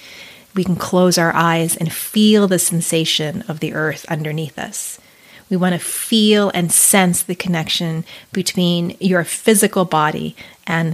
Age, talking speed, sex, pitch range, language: 30-49, 150 wpm, female, 170-190 Hz, English